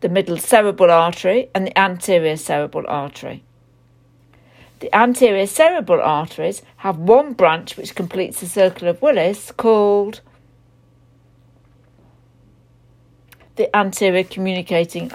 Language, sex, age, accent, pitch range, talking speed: English, female, 60-79, British, 125-200 Hz, 105 wpm